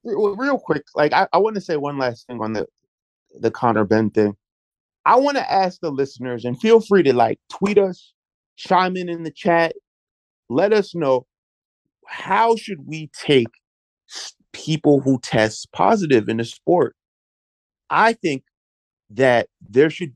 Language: English